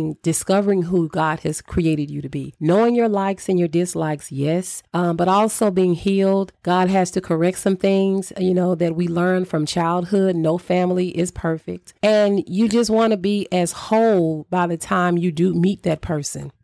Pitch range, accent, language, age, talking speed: 160-185 Hz, American, English, 40-59, 190 wpm